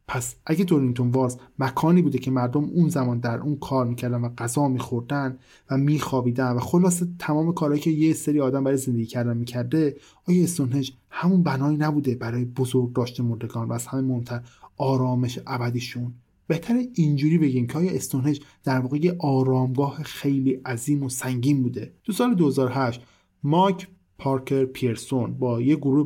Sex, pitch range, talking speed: male, 125-155 Hz, 155 wpm